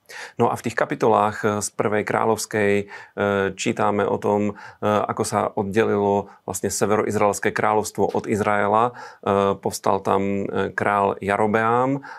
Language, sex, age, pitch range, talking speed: Slovak, male, 30-49, 100-110 Hz, 115 wpm